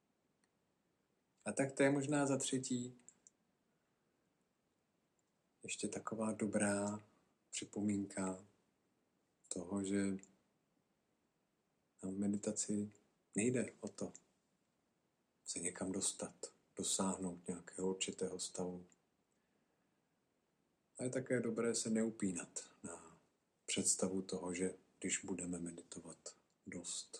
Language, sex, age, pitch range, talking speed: Czech, male, 50-69, 90-105 Hz, 85 wpm